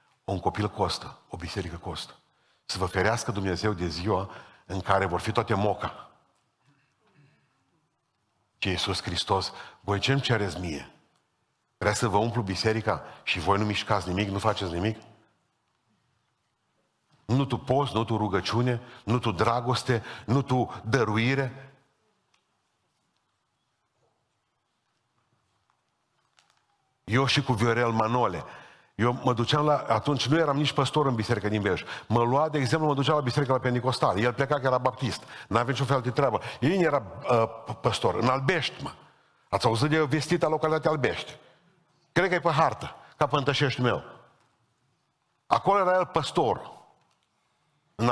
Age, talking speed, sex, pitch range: 50-69, 140 wpm, male, 105-140 Hz